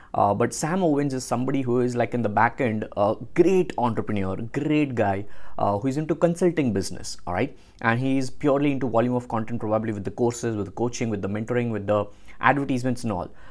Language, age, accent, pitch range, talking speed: English, 20-39, Indian, 110-135 Hz, 220 wpm